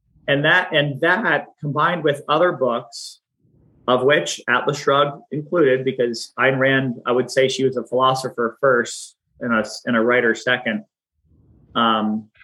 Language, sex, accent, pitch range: English, male, American, 115-140 Hz